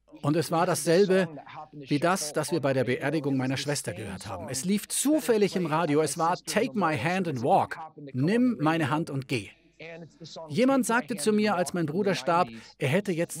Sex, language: male, German